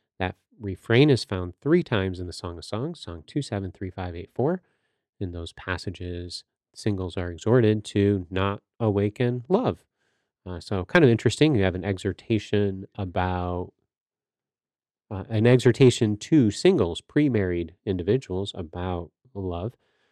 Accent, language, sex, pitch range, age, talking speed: American, English, male, 90-115 Hz, 30-49, 140 wpm